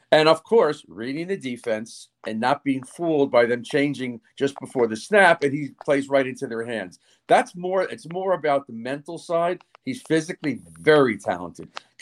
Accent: American